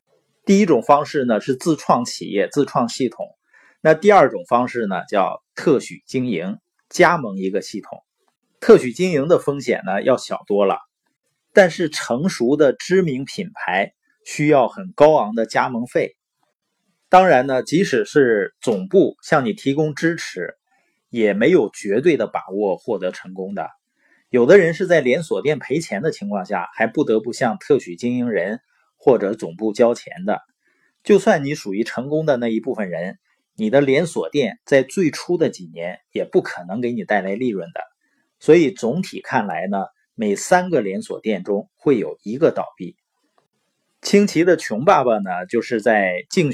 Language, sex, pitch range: Chinese, male, 120-185 Hz